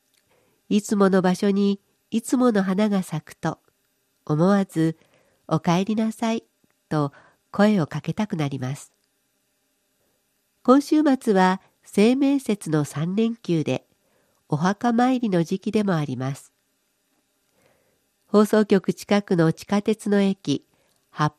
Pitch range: 165-225 Hz